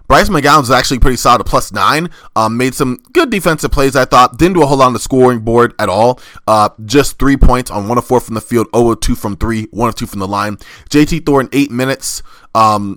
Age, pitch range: 20-39, 110-135 Hz